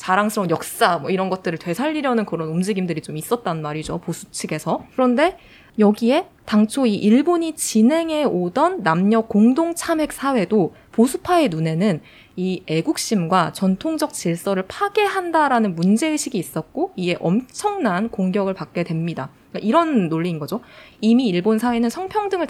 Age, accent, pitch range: 20-39, native, 175-255 Hz